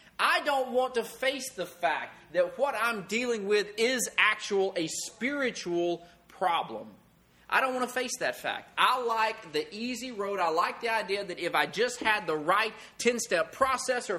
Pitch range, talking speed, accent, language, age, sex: 160-250 Hz, 180 wpm, American, English, 30-49, male